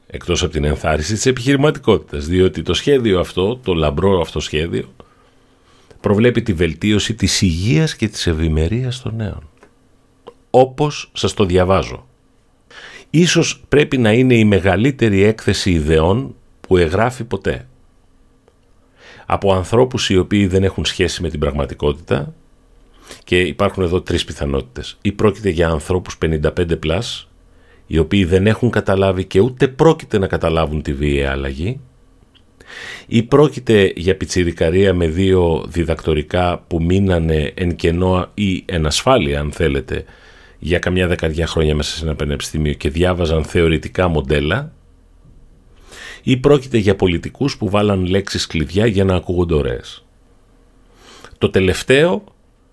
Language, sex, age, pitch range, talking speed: Greek, male, 40-59, 80-110 Hz, 130 wpm